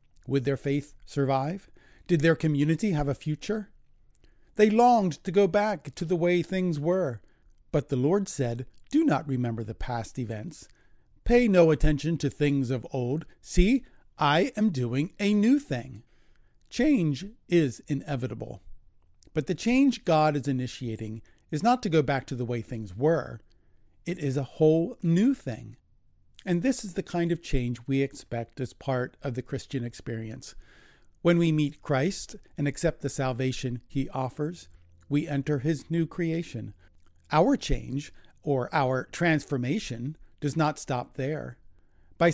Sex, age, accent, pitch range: male, 40-59, American, 125-170 Hz